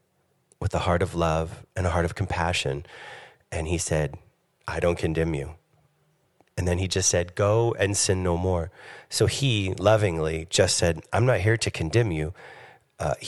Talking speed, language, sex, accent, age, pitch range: 175 wpm, English, male, American, 30-49, 85-110 Hz